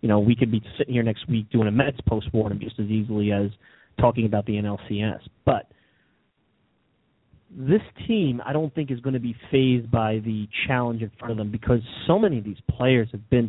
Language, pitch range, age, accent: English, 110-125 Hz, 30-49, American